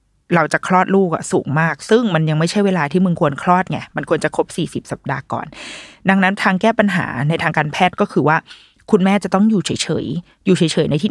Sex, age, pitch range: female, 20-39, 155-195 Hz